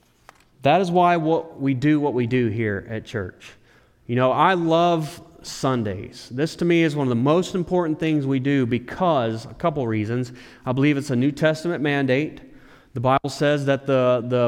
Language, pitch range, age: English, 125-150 Hz, 30-49